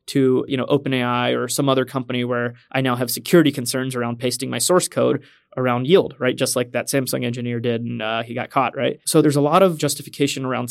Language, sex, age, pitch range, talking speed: English, male, 20-39, 130-150 Hz, 230 wpm